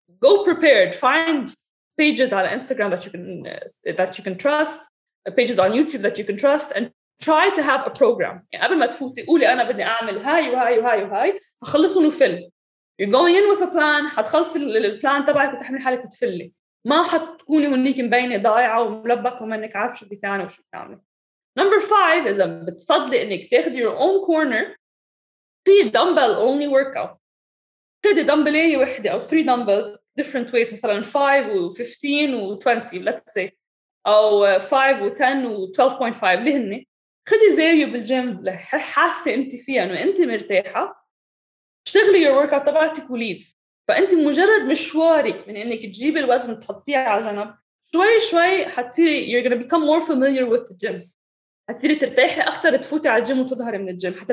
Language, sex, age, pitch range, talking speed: English, female, 20-39, 225-315 Hz, 85 wpm